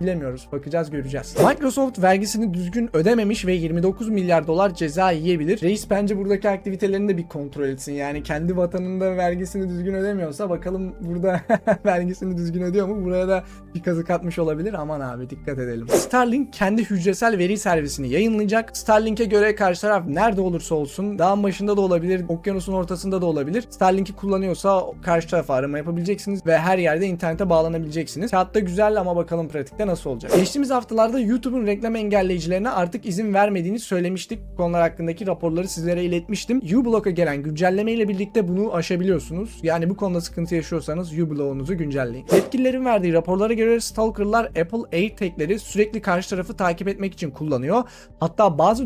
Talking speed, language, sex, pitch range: 155 wpm, Turkish, male, 165-205 Hz